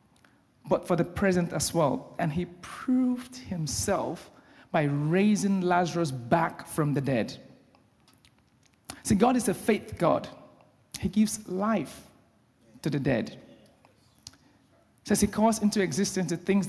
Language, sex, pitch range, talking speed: English, male, 150-200 Hz, 130 wpm